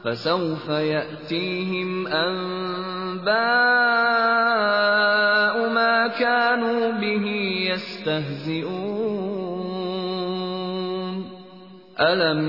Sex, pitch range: male, 150-185 Hz